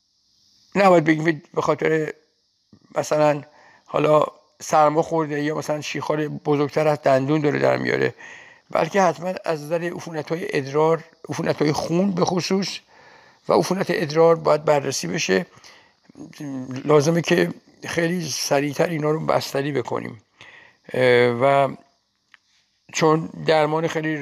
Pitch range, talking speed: 140-170 Hz, 105 wpm